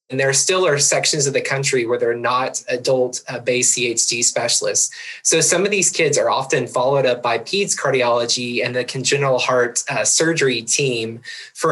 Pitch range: 125-160 Hz